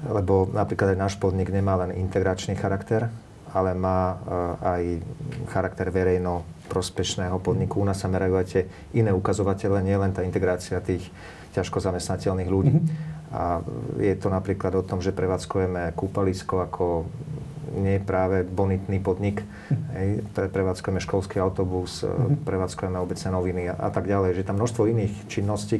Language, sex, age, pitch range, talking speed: Slovak, male, 40-59, 95-105 Hz, 140 wpm